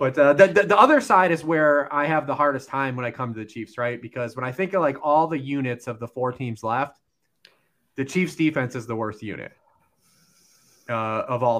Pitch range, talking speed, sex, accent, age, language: 120-155 Hz, 235 wpm, male, American, 30-49, English